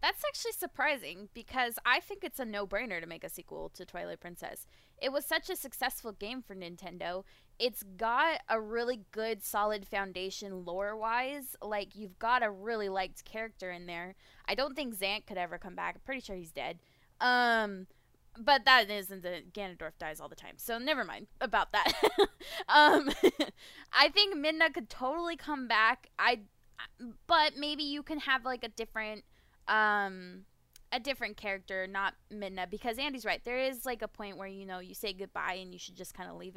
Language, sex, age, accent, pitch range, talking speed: English, female, 10-29, American, 195-260 Hz, 185 wpm